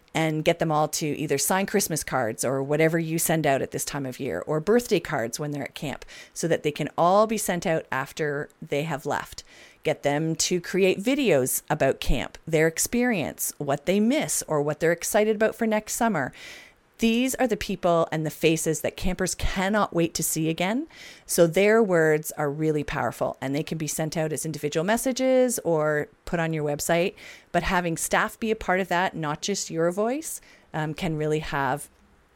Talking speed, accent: 200 wpm, American